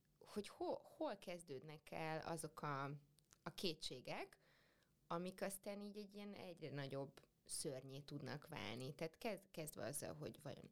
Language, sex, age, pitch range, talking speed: Hungarian, female, 20-39, 145-170 Hz, 135 wpm